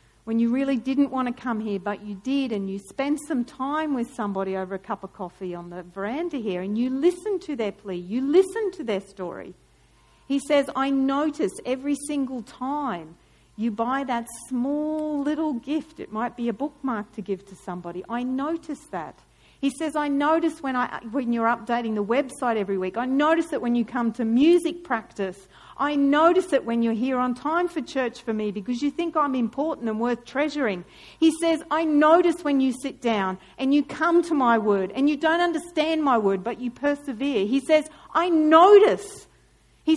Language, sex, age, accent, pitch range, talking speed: English, female, 50-69, Australian, 225-300 Hz, 200 wpm